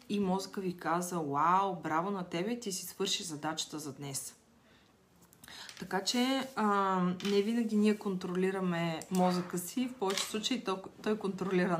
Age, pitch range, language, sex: 30-49, 180-215 Hz, Bulgarian, female